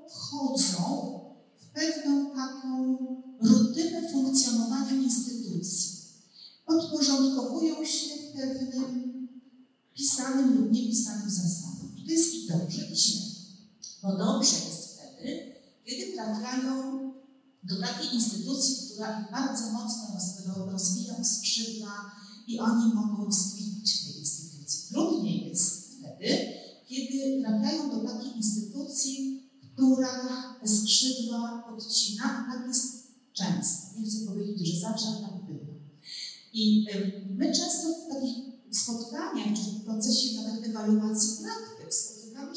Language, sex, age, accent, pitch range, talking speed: Polish, female, 40-59, native, 205-260 Hz, 105 wpm